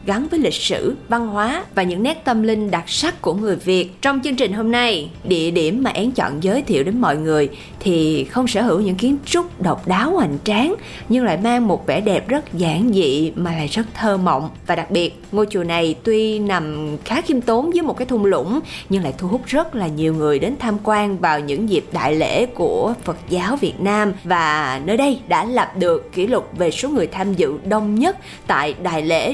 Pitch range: 180-245 Hz